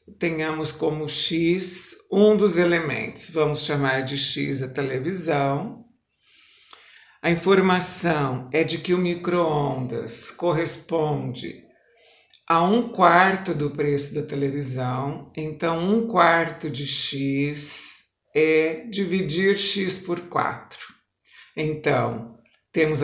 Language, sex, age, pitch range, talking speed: Portuguese, male, 60-79, 140-175 Hz, 100 wpm